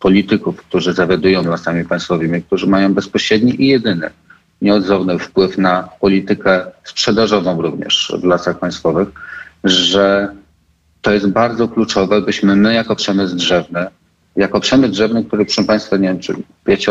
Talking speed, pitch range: 140 wpm, 90-105 Hz